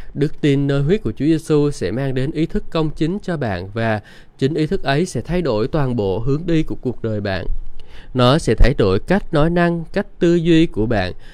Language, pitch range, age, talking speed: Vietnamese, 115-150 Hz, 20-39, 235 wpm